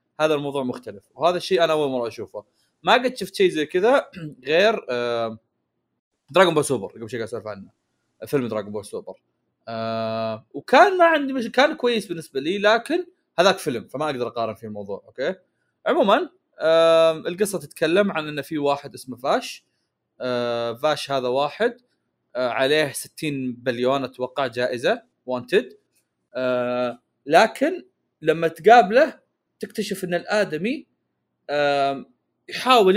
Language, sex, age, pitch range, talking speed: Arabic, male, 20-39, 140-220 Hz, 125 wpm